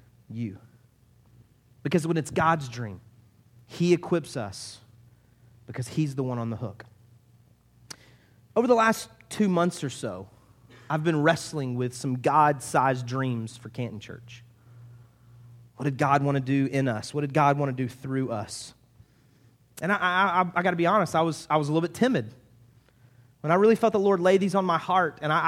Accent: American